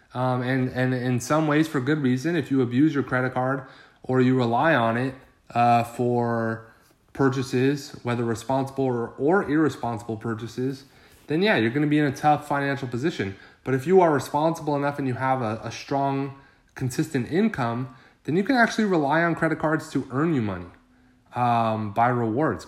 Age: 30-49